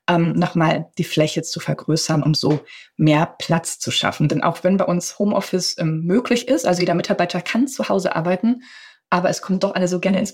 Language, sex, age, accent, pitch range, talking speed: German, female, 20-39, German, 170-215 Hz, 210 wpm